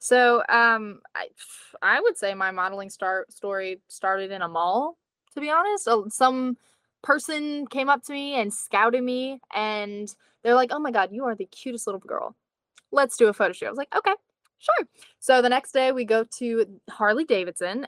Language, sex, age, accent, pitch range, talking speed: English, female, 10-29, American, 205-275 Hz, 185 wpm